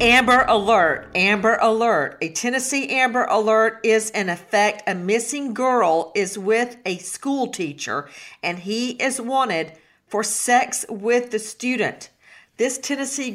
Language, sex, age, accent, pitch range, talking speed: English, female, 50-69, American, 205-250 Hz, 135 wpm